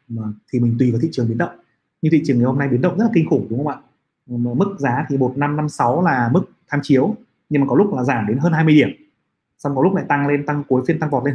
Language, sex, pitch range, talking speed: Vietnamese, male, 125-160 Hz, 280 wpm